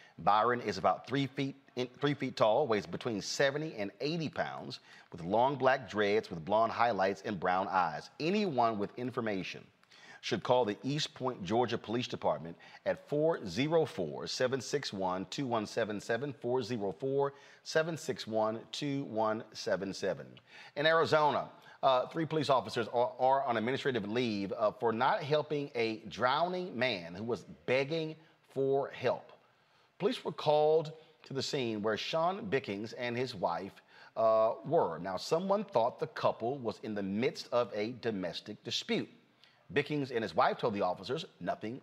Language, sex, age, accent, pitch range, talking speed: English, male, 40-59, American, 115-165 Hz, 135 wpm